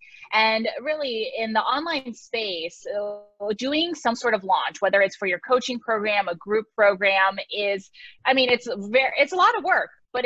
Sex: female